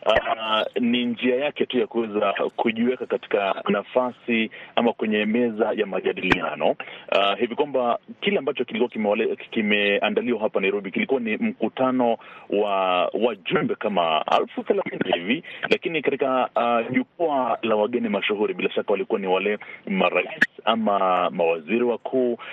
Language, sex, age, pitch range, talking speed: Swahili, male, 40-59, 105-125 Hz, 135 wpm